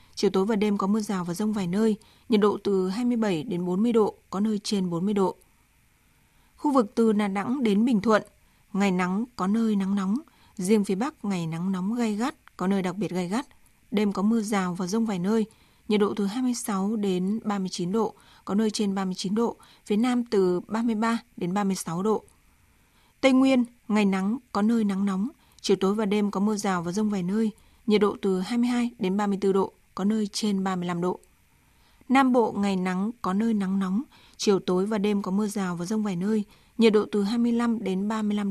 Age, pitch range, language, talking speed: 20-39, 195-225 Hz, Vietnamese, 210 wpm